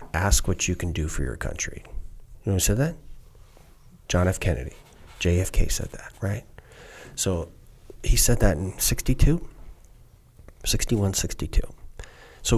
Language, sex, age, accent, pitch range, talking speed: English, male, 40-59, American, 85-115 Hz, 140 wpm